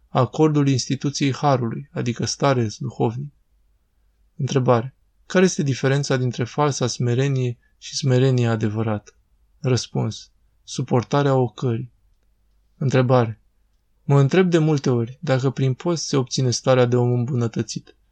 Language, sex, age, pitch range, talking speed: Romanian, male, 20-39, 120-145 Hz, 115 wpm